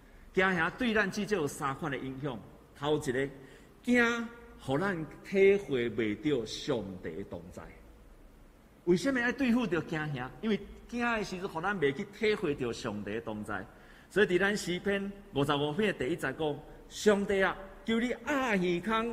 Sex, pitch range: male, 130-200 Hz